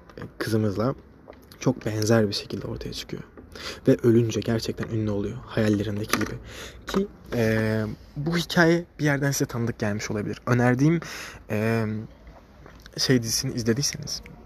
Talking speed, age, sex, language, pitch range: 120 wpm, 20-39, male, Turkish, 110-145 Hz